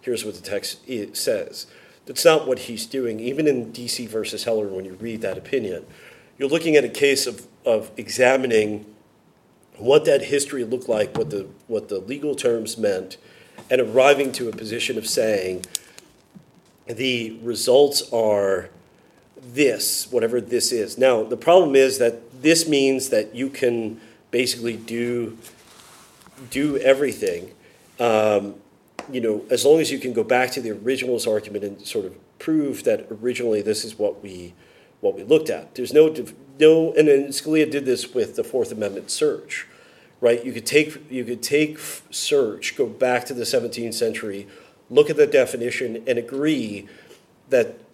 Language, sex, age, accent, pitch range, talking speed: English, male, 40-59, American, 115-170 Hz, 165 wpm